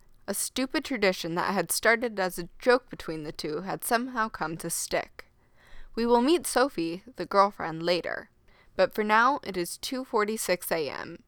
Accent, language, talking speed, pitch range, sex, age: American, English, 160 wpm, 165-220 Hz, female, 10-29